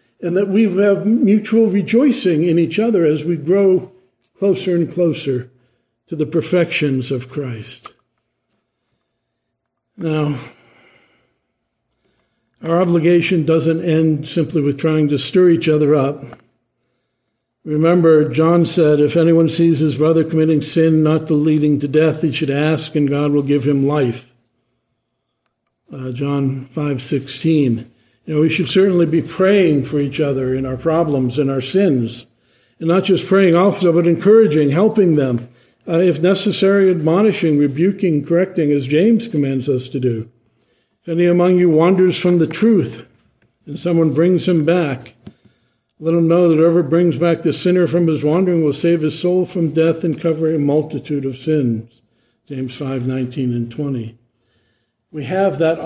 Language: English